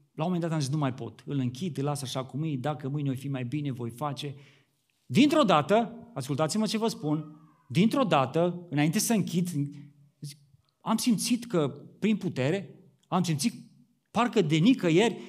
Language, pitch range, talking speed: Romanian, 135-195 Hz, 175 wpm